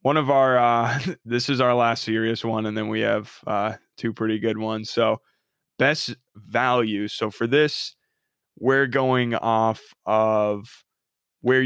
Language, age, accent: English, 20-39, American